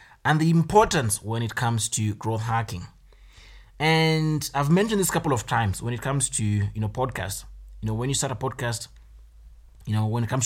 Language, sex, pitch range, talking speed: English, male, 105-140 Hz, 205 wpm